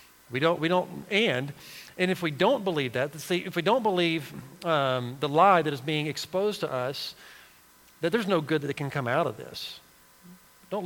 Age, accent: 40-59, American